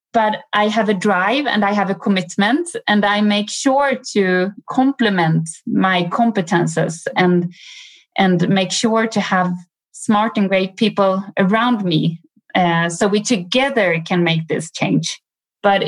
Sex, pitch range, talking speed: female, 185-240 Hz, 145 wpm